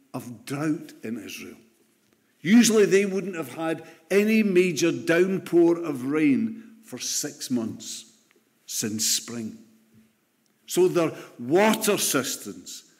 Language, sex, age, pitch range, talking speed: English, male, 60-79, 145-205 Hz, 105 wpm